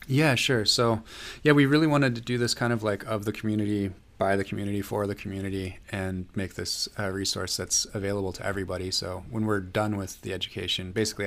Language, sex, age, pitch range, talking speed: English, male, 20-39, 90-105 Hz, 210 wpm